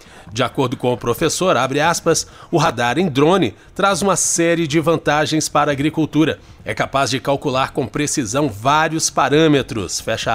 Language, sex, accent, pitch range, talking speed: Portuguese, male, Brazilian, 135-170 Hz, 160 wpm